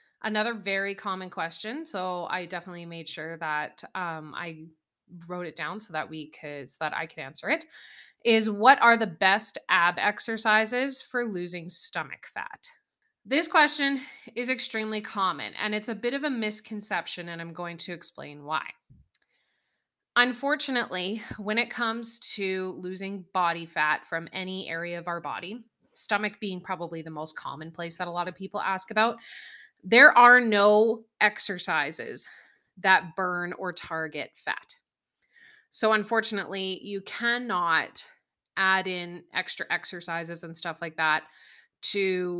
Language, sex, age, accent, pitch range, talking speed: English, female, 30-49, American, 170-215 Hz, 145 wpm